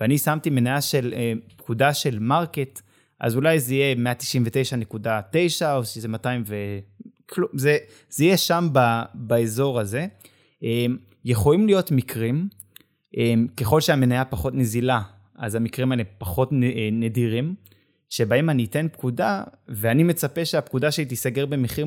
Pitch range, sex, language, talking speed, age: 115-145 Hz, male, Hebrew, 125 wpm, 20-39